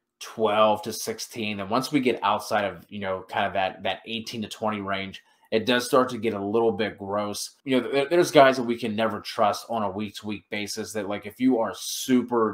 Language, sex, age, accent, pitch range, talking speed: English, male, 20-39, American, 100-115 Hz, 225 wpm